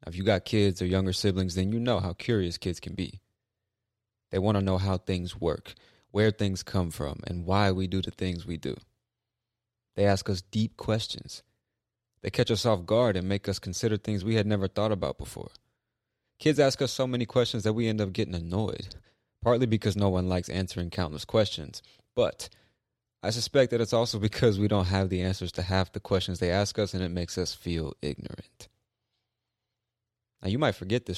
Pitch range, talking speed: 95-115 Hz, 200 wpm